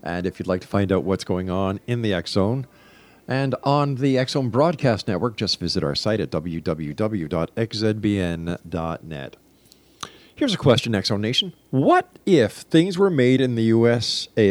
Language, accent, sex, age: English, American, male, 50-69